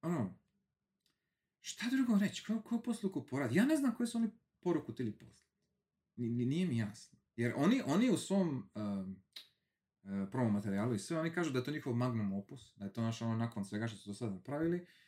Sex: male